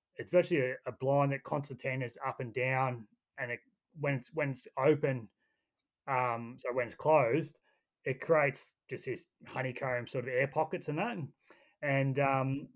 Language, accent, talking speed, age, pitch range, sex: English, Australian, 175 wpm, 20-39, 120-140 Hz, male